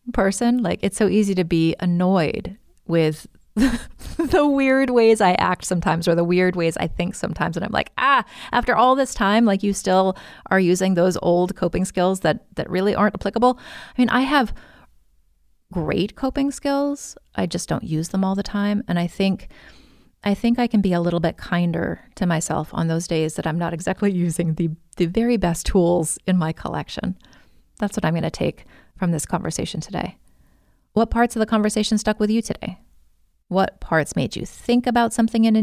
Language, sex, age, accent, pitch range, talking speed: English, female, 30-49, American, 170-215 Hz, 200 wpm